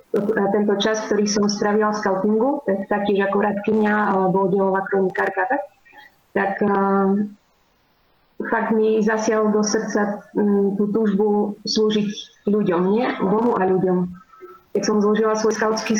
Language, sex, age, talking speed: Slovak, female, 30-49, 130 wpm